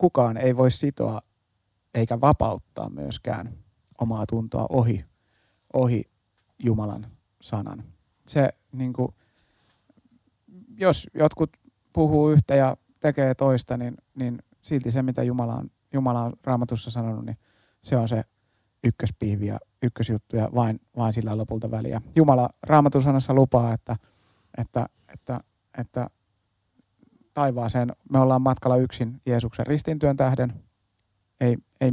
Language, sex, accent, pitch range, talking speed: Finnish, male, native, 110-135 Hz, 120 wpm